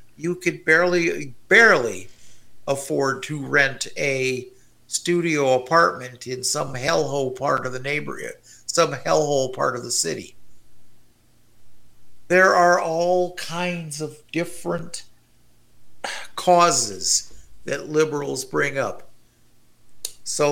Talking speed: 100 wpm